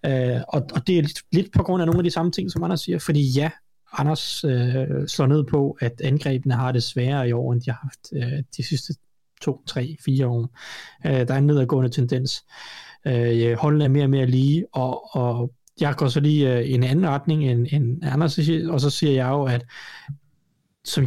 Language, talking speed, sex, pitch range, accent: Danish, 220 wpm, male, 130-155 Hz, native